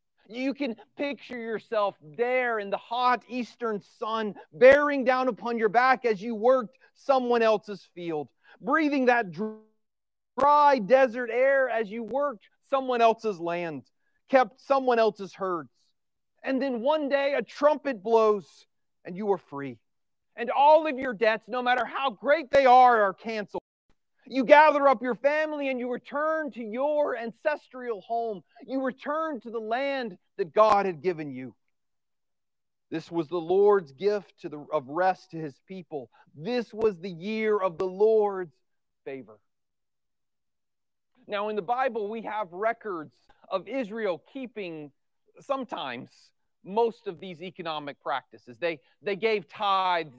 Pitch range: 190-260 Hz